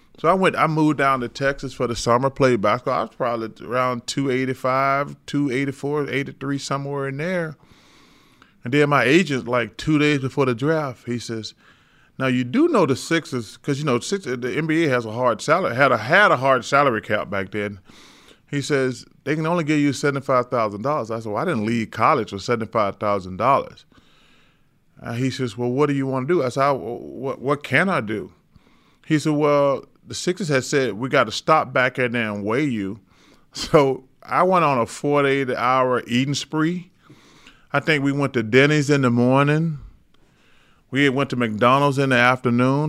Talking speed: 195 wpm